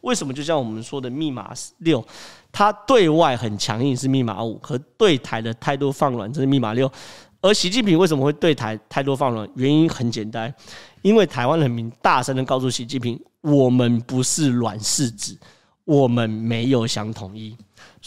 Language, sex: Chinese, male